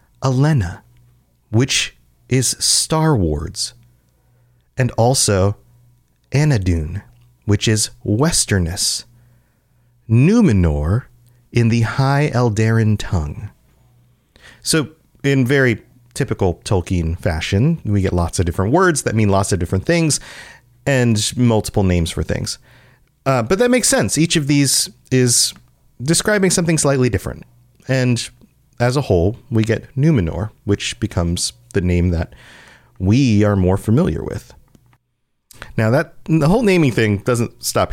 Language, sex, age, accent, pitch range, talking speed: English, male, 30-49, American, 95-130 Hz, 125 wpm